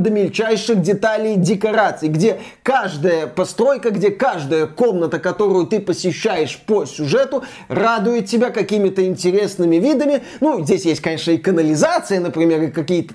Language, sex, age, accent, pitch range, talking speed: Russian, male, 20-39, native, 180-230 Hz, 130 wpm